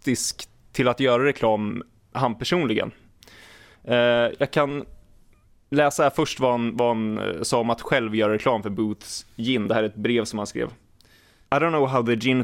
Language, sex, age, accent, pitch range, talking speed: Swedish, male, 20-39, native, 110-140 Hz, 185 wpm